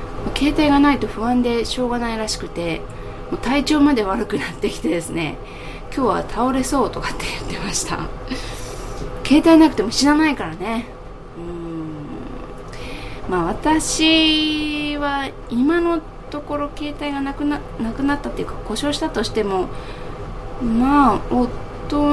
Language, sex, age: Japanese, female, 20-39